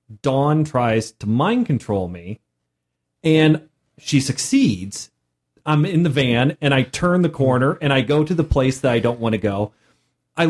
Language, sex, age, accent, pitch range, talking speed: English, male, 30-49, American, 115-155 Hz, 175 wpm